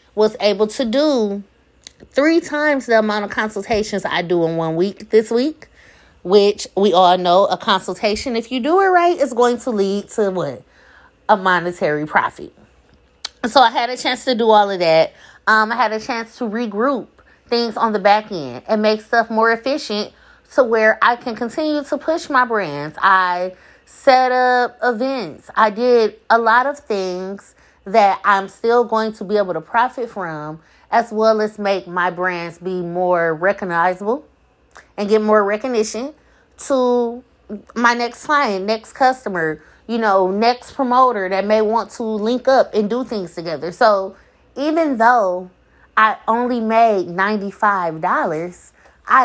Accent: American